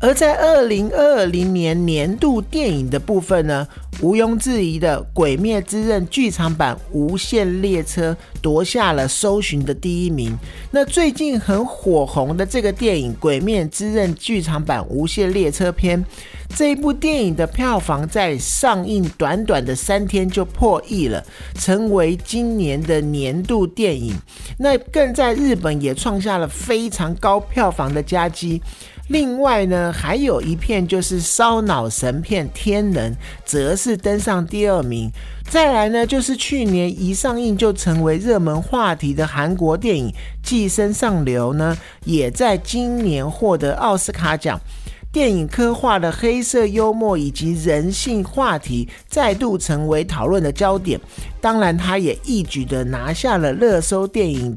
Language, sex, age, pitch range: Chinese, male, 50-69, 155-225 Hz